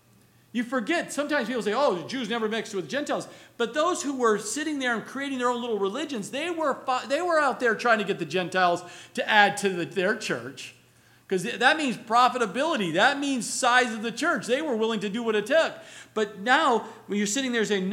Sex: male